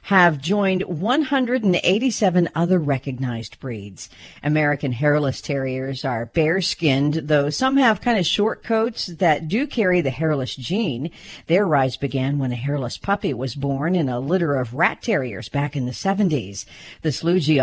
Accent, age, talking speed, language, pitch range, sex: American, 50-69, 155 wpm, English, 140-205 Hz, female